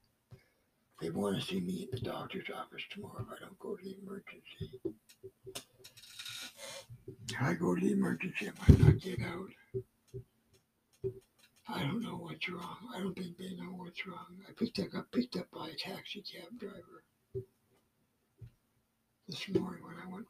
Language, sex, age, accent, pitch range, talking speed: English, male, 60-79, American, 120-195 Hz, 155 wpm